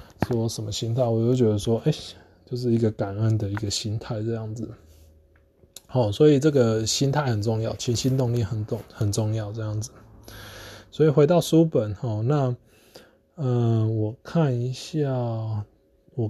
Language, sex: Chinese, male